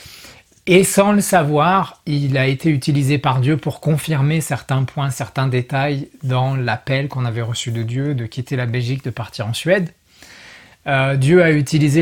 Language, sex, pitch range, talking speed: French, male, 130-160 Hz, 175 wpm